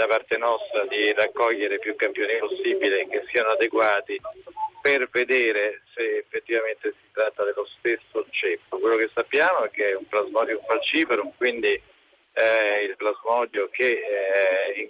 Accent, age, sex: native, 50-69, male